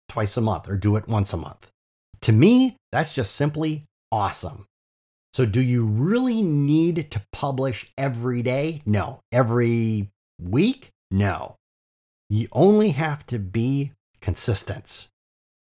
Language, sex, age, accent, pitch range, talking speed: English, male, 30-49, American, 100-140 Hz, 130 wpm